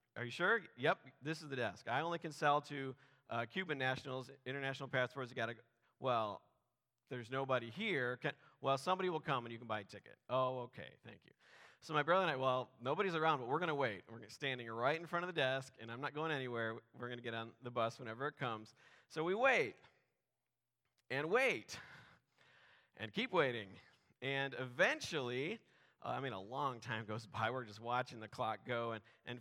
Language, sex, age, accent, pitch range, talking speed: English, male, 40-59, American, 120-145 Hz, 200 wpm